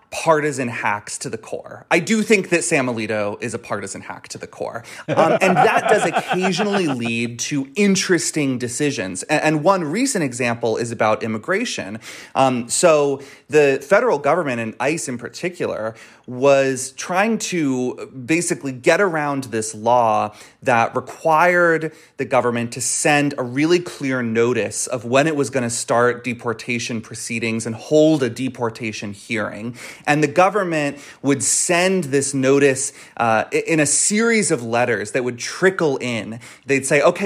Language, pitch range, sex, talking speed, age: English, 125-170 Hz, male, 155 wpm, 30-49